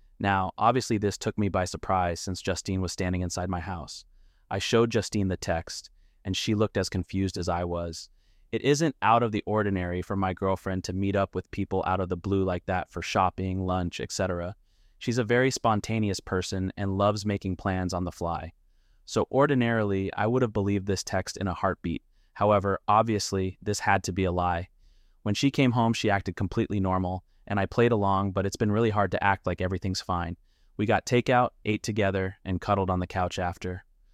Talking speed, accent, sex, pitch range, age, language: 200 wpm, American, male, 90-105 Hz, 30-49, English